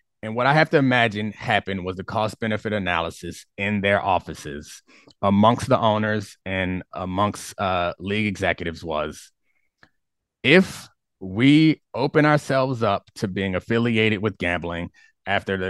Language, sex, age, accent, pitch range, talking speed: English, male, 30-49, American, 100-140 Hz, 140 wpm